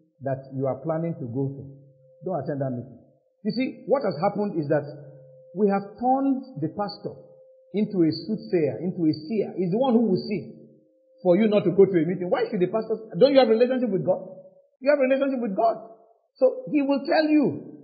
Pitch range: 155-230 Hz